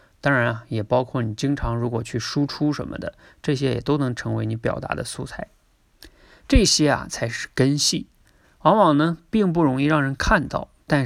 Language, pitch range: Chinese, 115-150 Hz